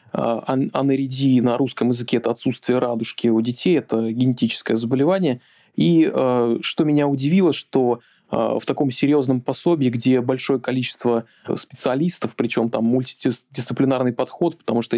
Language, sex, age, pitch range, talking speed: Russian, male, 20-39, 115-135 Hz, 125 wpm